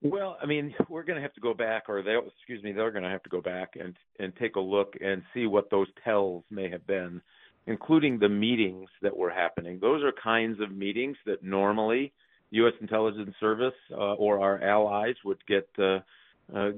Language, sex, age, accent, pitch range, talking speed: English, male, 50-69, American, 95-115 Hz, 205 wpm